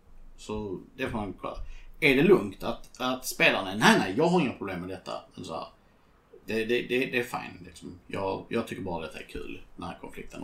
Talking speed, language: 205 wpm, Swedish